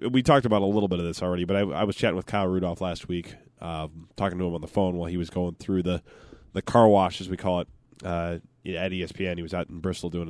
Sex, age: male, 20-39